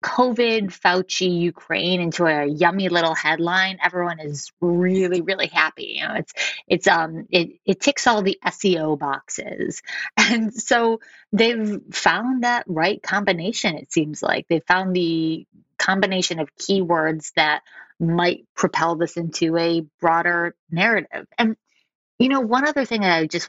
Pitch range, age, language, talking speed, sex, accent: 160-195 Hz, 20-39, English, 150 wpm, female, American